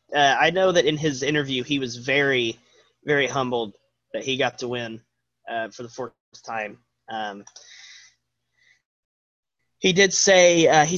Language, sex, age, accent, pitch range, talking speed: English, male, 20-39, American, 130-165 Hz, 155 wpm